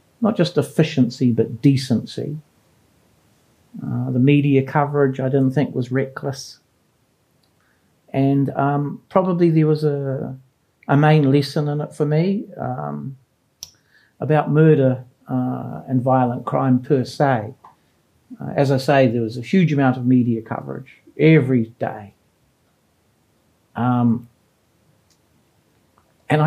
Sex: male